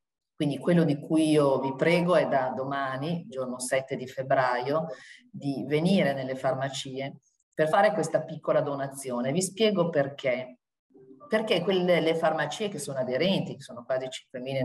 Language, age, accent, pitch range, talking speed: Italian, 40-59, native, 130-165 Hz, 145 wpm